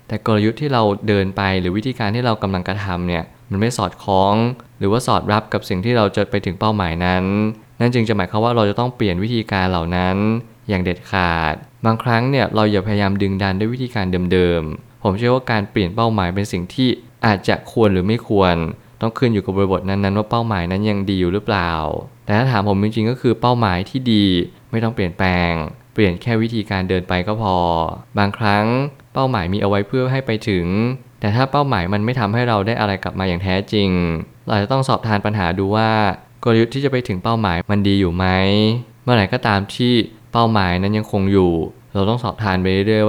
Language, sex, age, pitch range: Thai, male, 20-39, 95-115 Hz